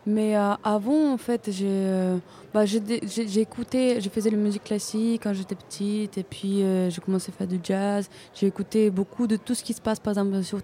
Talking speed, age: 230 wpm, 20-39